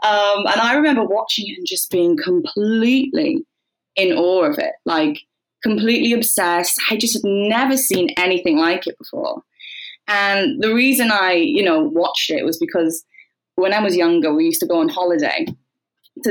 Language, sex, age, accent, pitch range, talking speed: English, female, 20-39, British, 190-300 Hz, 175 wpm